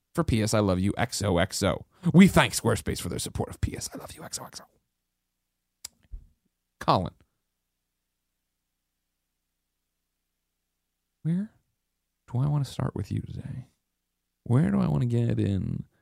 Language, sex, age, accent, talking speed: English, male, 30-49, American, 130 wpm